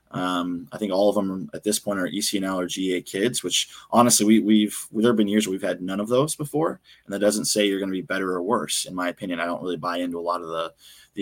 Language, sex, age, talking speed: English, male, 20-39, 275 wpm